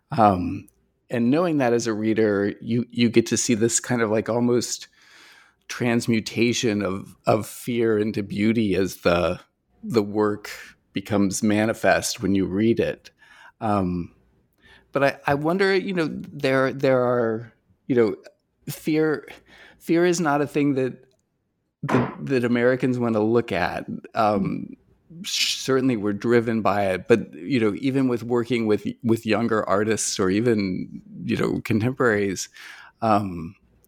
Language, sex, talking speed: English, male, 145 wpm